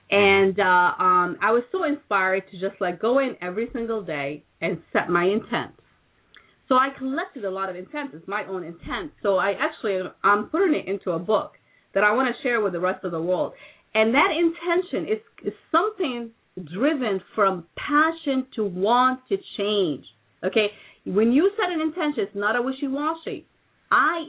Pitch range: 195-280 Hz